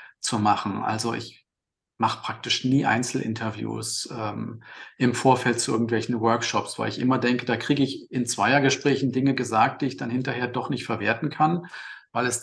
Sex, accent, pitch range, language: male, German, 120-135 Hz, English